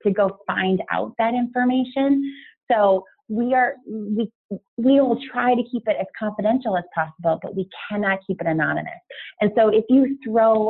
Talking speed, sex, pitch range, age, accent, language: 170 wpm, female, 175-220 Hz, 30-49, American, English